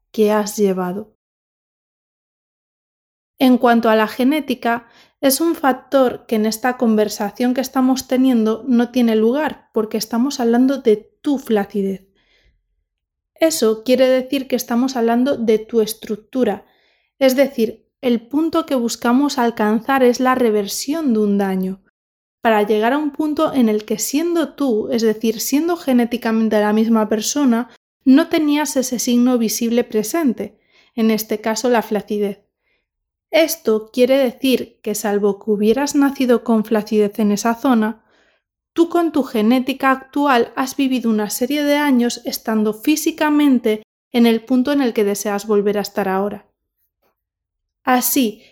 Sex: female